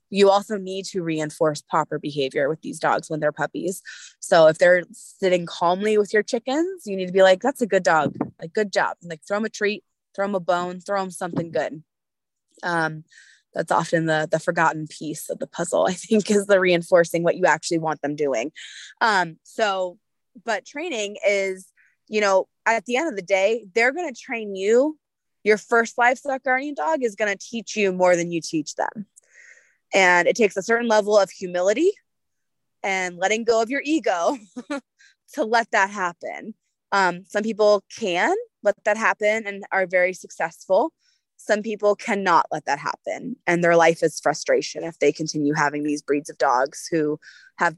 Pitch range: 170-220 Hz